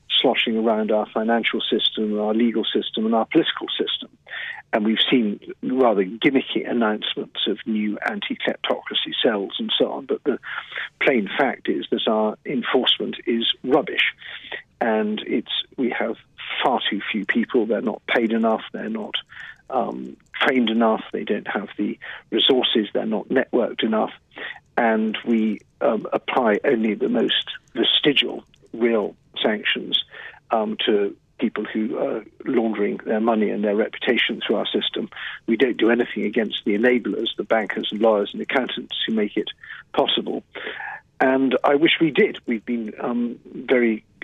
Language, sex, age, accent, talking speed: English, male, 50-69, British, 150 wpm